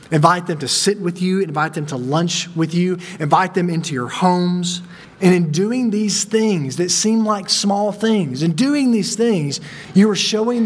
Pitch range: 155-195 Hz